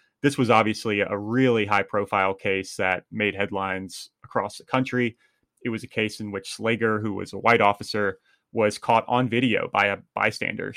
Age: 30-49